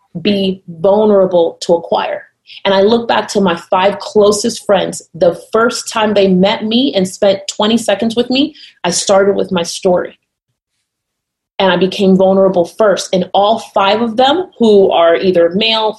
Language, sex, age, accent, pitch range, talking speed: English, female, 30-49, American, 180-215 Hz, 165 wpm